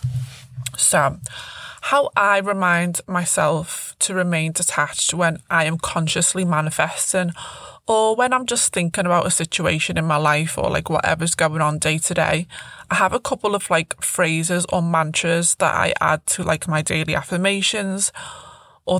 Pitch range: 155-185 Hz